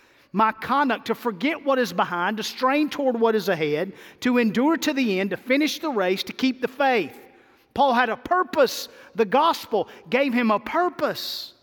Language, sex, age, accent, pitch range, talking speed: English, male, 50-69, American, 175-265 Hz, 185 wpm